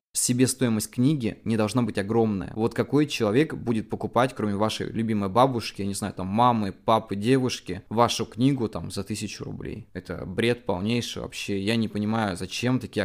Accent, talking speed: native, 180 wpm